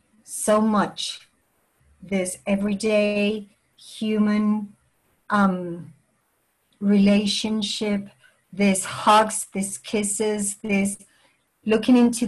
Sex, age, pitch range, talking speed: female, 50-69, 200-235 Hz, 70 wpm